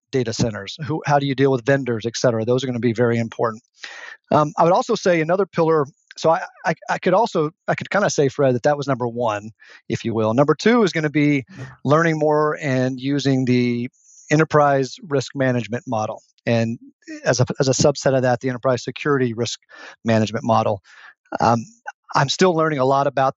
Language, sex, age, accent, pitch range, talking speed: English, male, 40-59, American, 125-155 Hz, 210 wpm